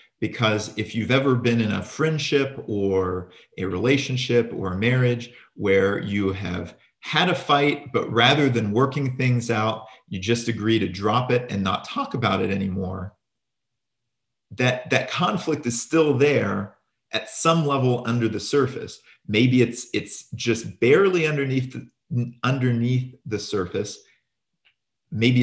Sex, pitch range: male, 105-130 Hz